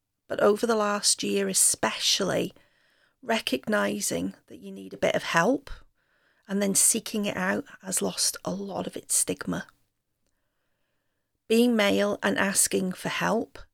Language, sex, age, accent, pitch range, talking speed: English, female, 40-59, British, 180-240 Hz, 140 wpm